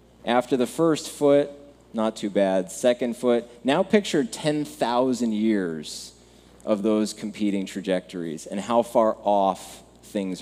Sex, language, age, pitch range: male, English, 20-39, 95-115 Hz